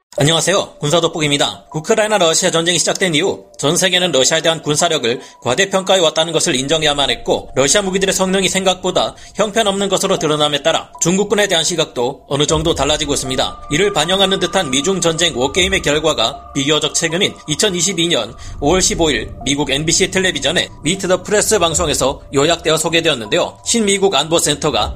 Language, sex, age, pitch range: Korean, male, 30-49, 150-195 Hz